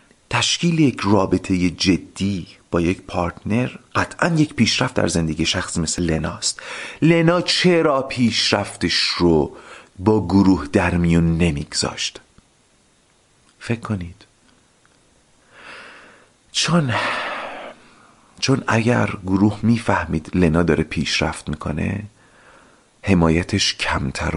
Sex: male